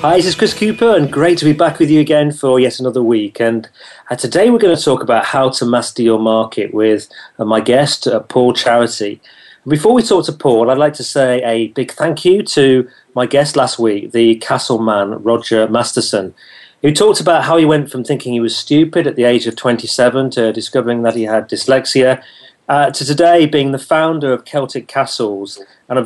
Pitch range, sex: 120-155 Hz, male